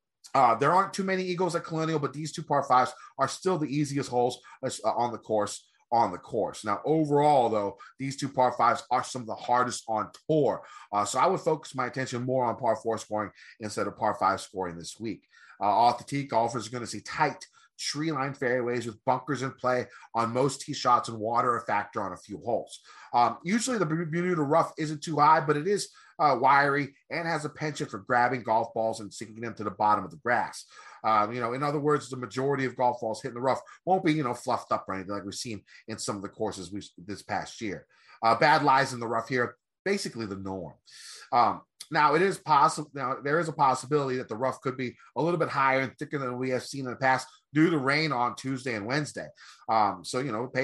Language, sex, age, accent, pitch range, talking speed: English, male, 30-49, American, 110-140 Hz, 235 wpm